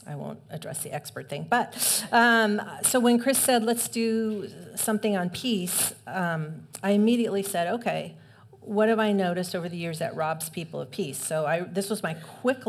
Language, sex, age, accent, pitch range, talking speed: English, female, 40-59, American, 165-210 Hz, 185 wpm